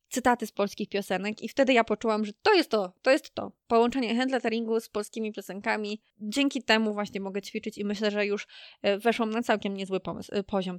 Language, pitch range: Polish, 195-240 Hz